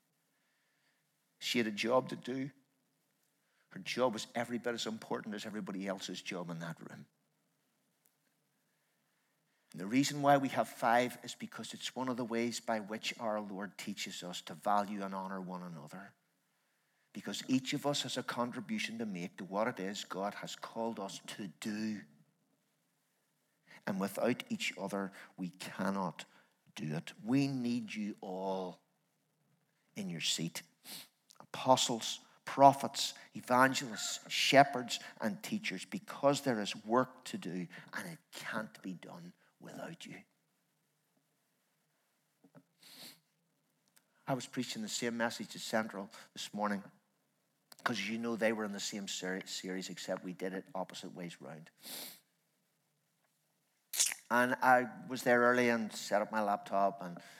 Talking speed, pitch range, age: 145 wpm, 95-130 Hz, 60-79